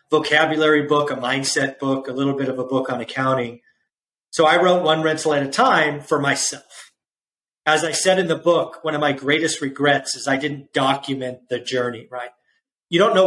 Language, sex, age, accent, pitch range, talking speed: English, male, 40-59, American, 130-160 Hz, 200 wpm